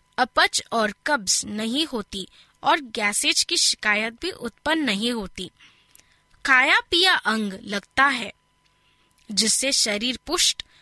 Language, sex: Hindi, female